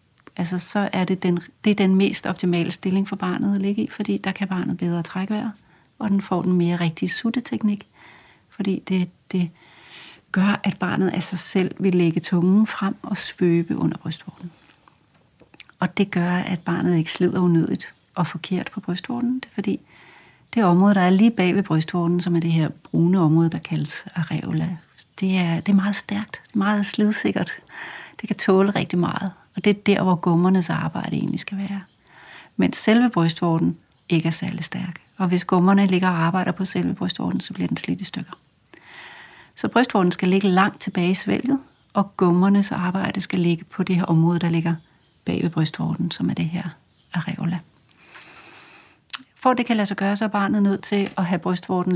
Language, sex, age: Danish, female, 40-59